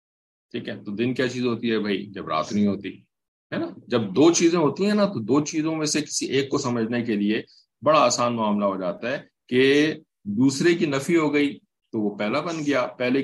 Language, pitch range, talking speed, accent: English, 100-145 Hz, 225 wpm, Indian